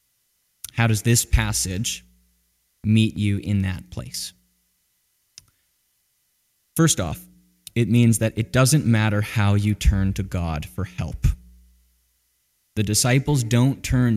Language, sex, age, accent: English, male, 20-39, American